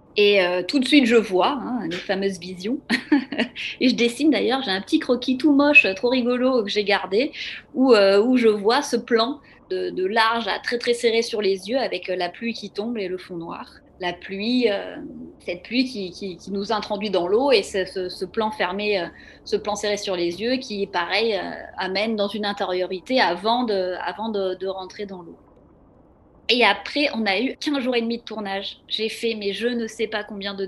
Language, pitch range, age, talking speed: French, 195-250 Hz, 30-49, 215 wpm